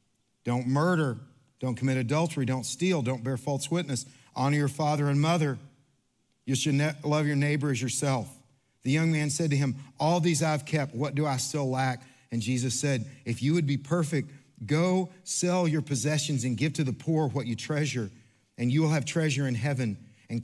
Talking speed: 195 wpm